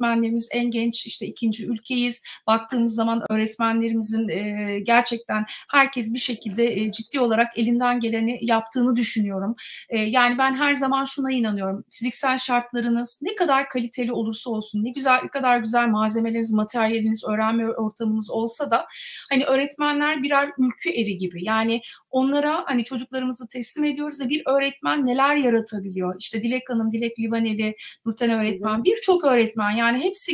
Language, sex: Turkish, female